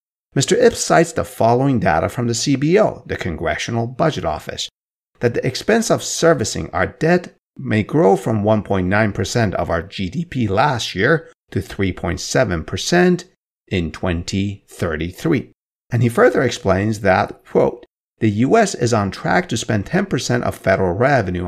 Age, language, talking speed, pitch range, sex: 50-69, English, 140 wpm, 95-150 Hz, male